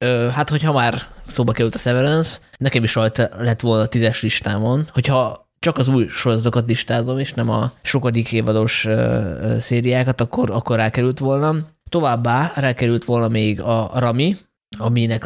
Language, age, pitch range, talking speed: Hungarian, 20-39, 115-130 Hz, 150 wpm